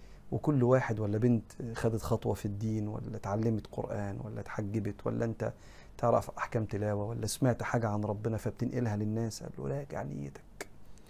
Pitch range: 105-130 Hz